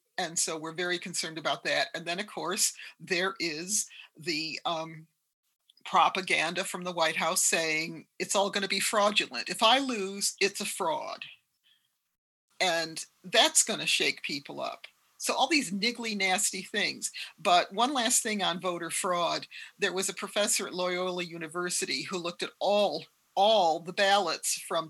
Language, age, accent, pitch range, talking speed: English, 50-69, American, 170-210 Hz, 165 wpm